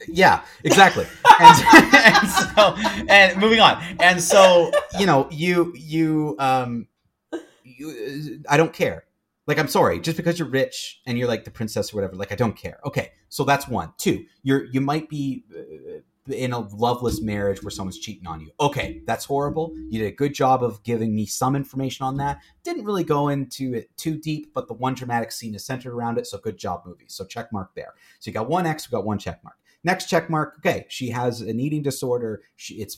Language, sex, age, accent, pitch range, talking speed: English, male, 30-49, American, 110-160 Hz, 210 wpm